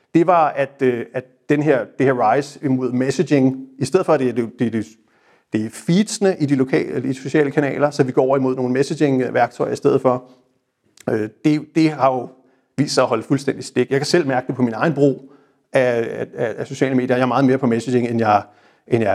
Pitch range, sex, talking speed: 125-145 Hz, male, 220 wpm